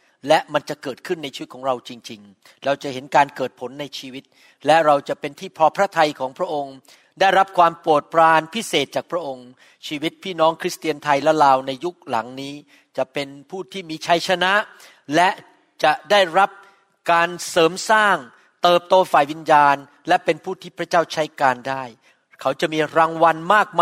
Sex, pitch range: male, 135-175 Hz